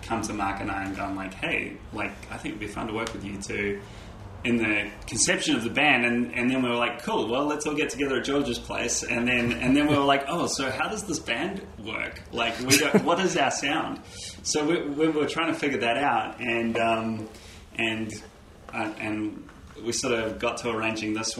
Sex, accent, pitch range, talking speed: male, Australian, 100-120 Hz, 235 wpm